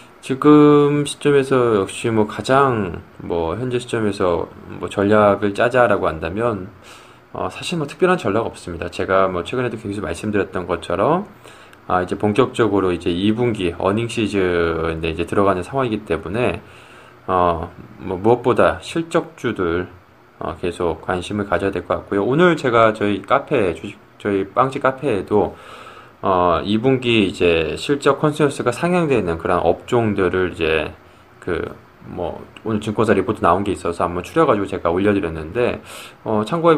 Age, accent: 20-39, native